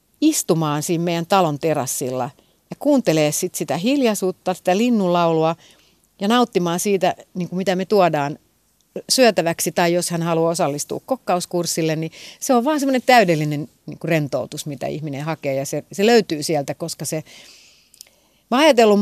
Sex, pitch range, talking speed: female, 160-205 Hz, 150 wpm